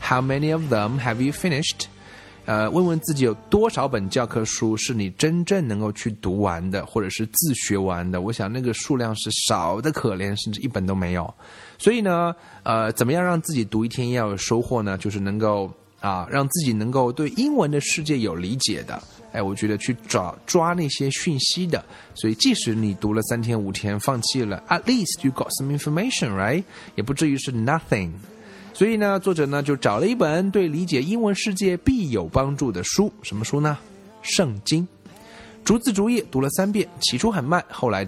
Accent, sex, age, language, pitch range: native, male, 20-39, Chinese, 105-170 Hz